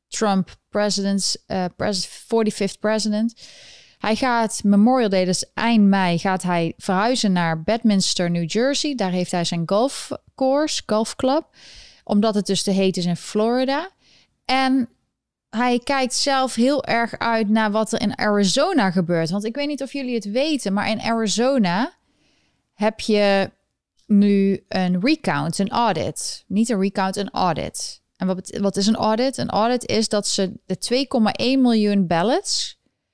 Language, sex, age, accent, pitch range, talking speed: Dutch, female, 20-39, Dutch, 195-230 Hz, 155 wpm